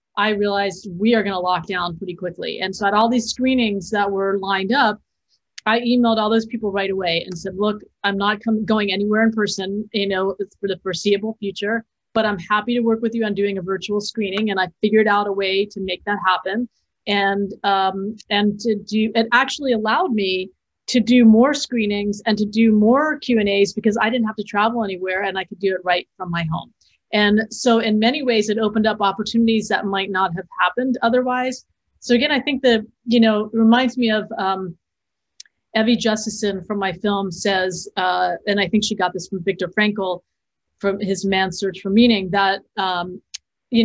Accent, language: American, English